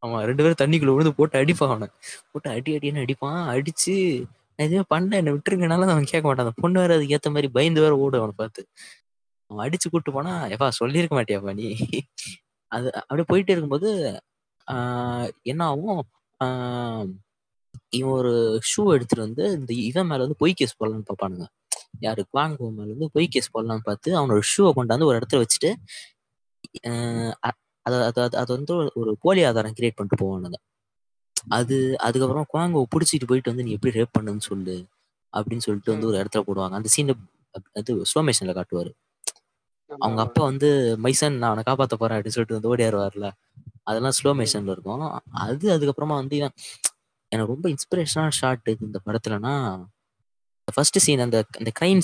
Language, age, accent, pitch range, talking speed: Tamil, 20-39, native, 110-145 Hz, 145 wpm